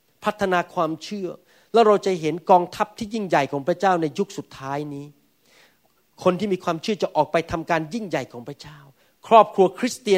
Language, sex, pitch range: Thai, male, 165-230 Hz